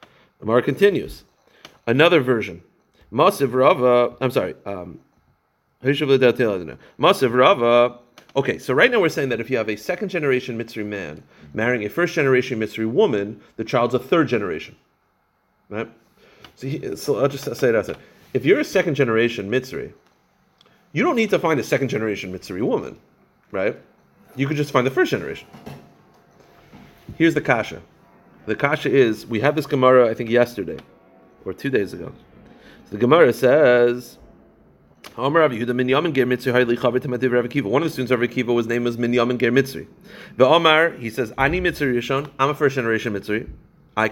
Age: 40-59